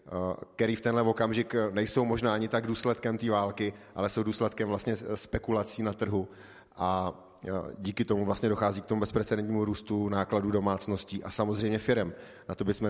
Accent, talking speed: native, 165 wpm